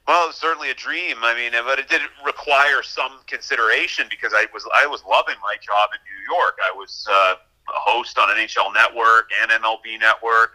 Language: English